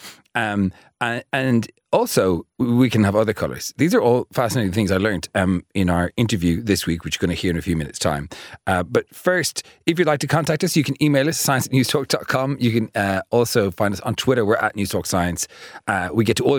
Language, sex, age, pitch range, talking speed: English, male, 30-49, 90-125 Hz, 225 wpm